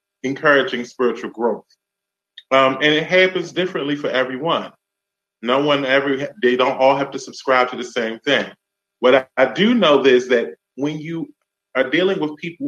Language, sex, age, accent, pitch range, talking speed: English, male, 30-49, American, 115-150 Hz, 170 wpm